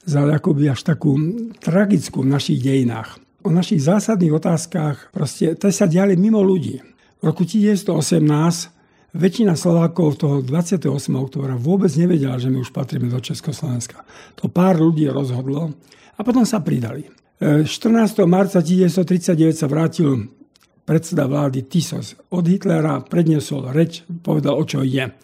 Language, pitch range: Slovak, 140-180 Hz